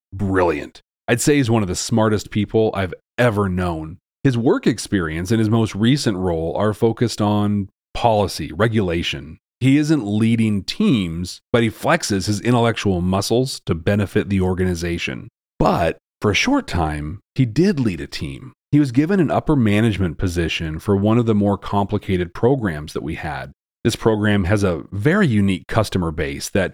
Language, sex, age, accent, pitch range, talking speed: English, male, 30-49, American, 95-120 Hz, 170 wpm